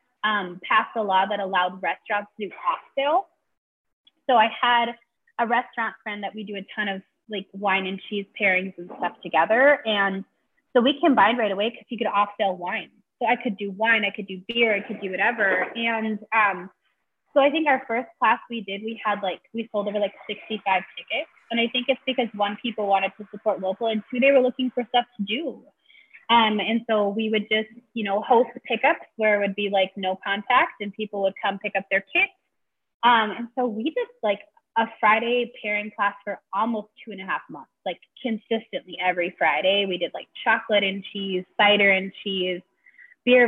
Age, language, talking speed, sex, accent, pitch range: 20-39, English, 210 wpm, female, American, 195-235 Hz